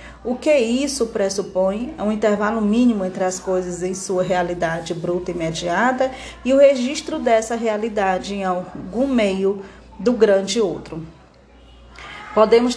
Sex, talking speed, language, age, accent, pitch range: female, 135 wpm, Portuguese, 20-39, Brazilian, 185-225 Hz